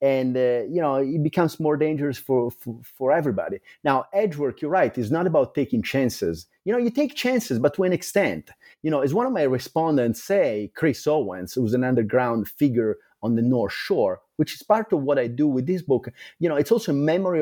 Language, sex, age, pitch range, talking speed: English, male, 30-49, 125-175 Hz, 225 wpm